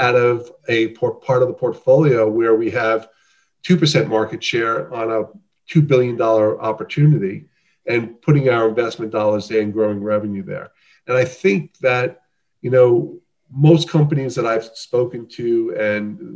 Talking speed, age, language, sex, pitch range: 150 wpm, 40-59, English, male, 115-150 Hz